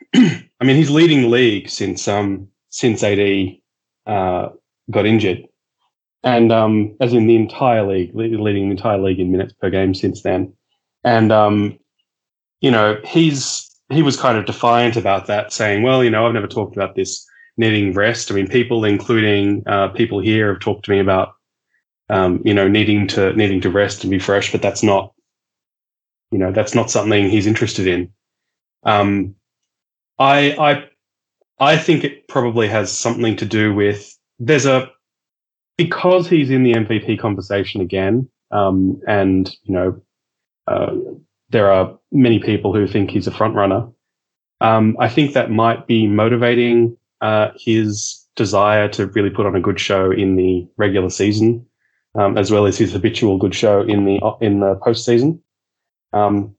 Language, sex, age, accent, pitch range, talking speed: English, male, 20-39, Australian, 100-120 Hz, 165 wpm